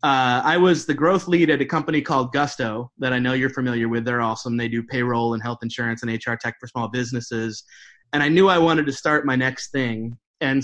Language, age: English, 30-49